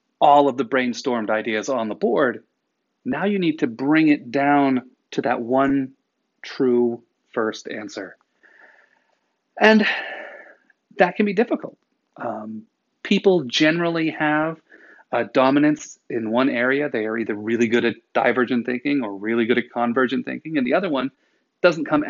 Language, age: English, 40-59